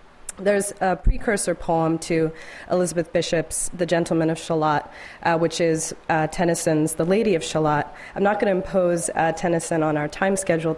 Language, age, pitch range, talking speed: English, 30-49, 160-180 Hz, 165 wpm